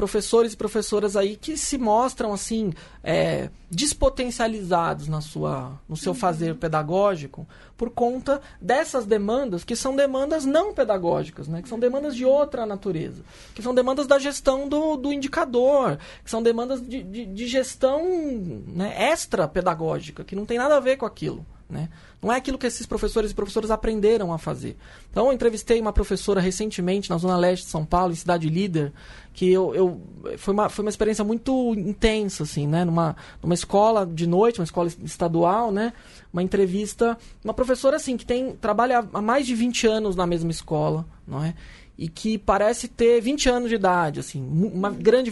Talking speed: 170 wpm